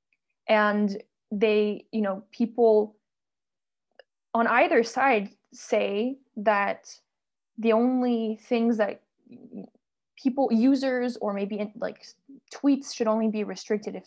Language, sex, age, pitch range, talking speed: English, female, 20-39, 200-230 Hz, 105 wpm